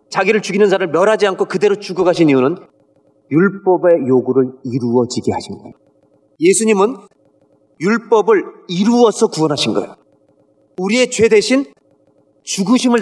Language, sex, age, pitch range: Korean, male, 40-59, 185-240 Hz